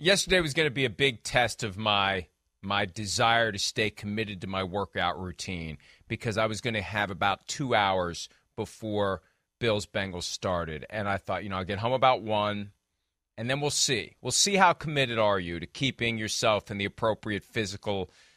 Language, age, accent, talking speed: English, 40-59, American, 195 wpm